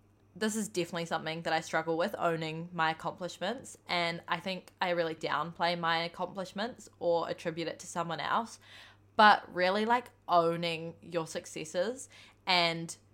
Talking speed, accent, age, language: 145 wpm, Australian, 20-39, English